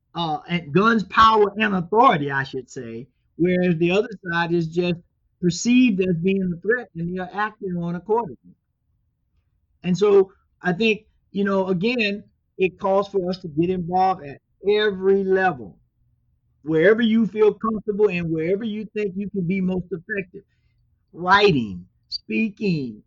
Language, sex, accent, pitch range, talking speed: English, male, American, 160-210 Hz, 150 wpm